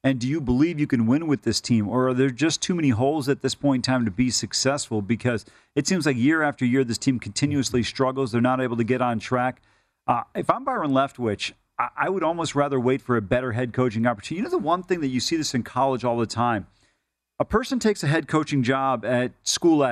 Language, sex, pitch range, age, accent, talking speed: English, male, 125-155 Hz, 40-59, American, 250 wpm